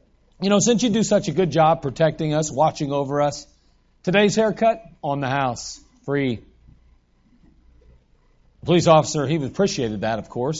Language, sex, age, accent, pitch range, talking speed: English, male, 40-59, American, 115-170 Hz, 160 wpm